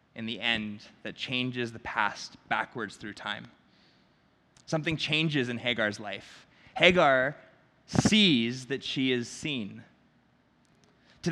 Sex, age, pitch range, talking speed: male, 20-39, 105-145 Hz, 115 wpm